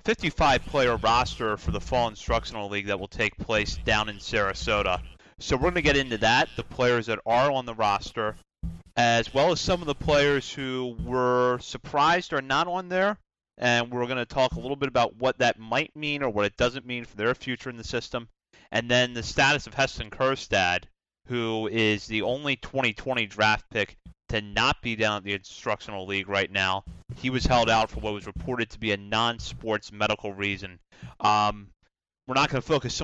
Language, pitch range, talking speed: English, 105-130 Hz, 205 wpm